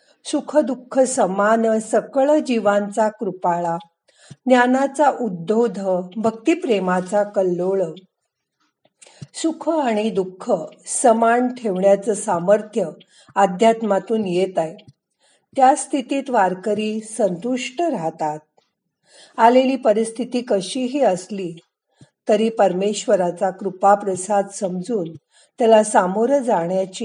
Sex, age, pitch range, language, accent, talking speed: female, 50-69, 190-245 Hz, Marathi, native, 65 wpm